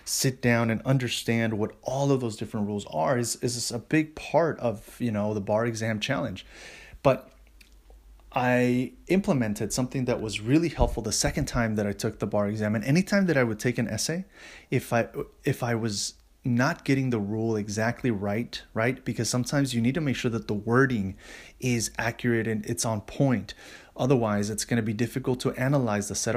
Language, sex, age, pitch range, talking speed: English, male, 30-49, 110-130 Hz, 195 wpm